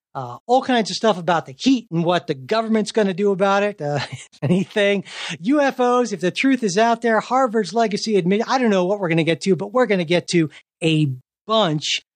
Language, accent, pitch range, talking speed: English, American, 155-195 Hz, 230 wpm